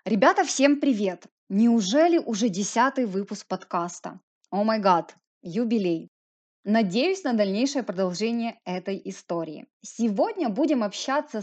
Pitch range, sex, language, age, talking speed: 190-265 Hz, female, Ukrainian, 20-39, 110 wpm